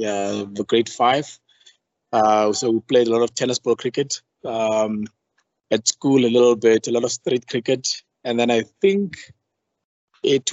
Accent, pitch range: South African, 110-125 Hz